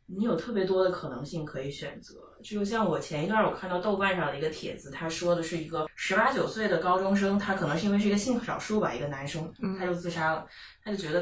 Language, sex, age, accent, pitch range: Chinese, female, 20-39, native, 160-205 Hz